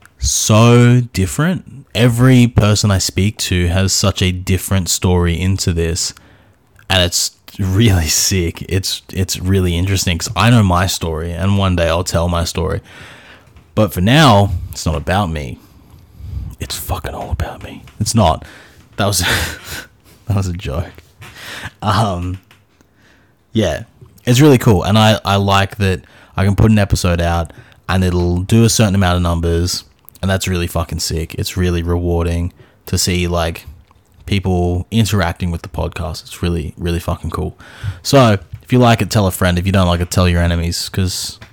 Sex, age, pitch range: male, 20-39, 85-110 Hz